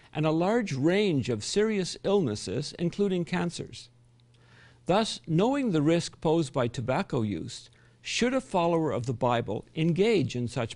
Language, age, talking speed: English, 50-69, 145 wpm